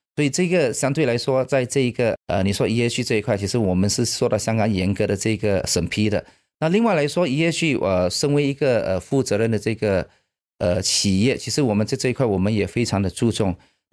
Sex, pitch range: male, 100-130 Hz